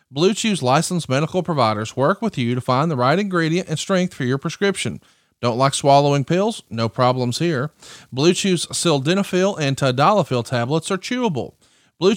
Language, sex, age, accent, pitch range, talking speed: English, male, 40-59, American, 125-185 Hz, 170 wpm